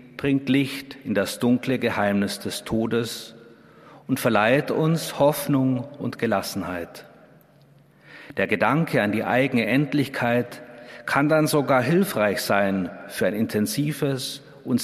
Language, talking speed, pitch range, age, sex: German, 115 wpm, 110-145 Hz, 50-69, male